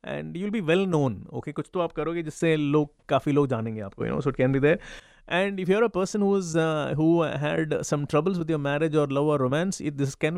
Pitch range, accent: 145-170 Hz, native